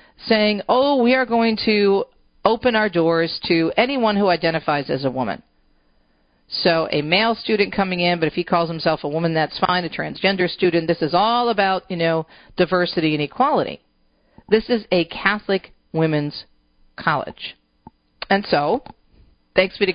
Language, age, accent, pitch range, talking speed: English, 40-59, American, 150-195 Hz, 160 wpm